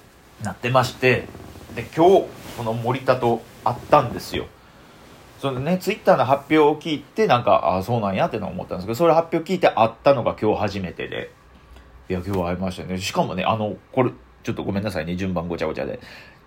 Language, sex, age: Japanese, male, 40-59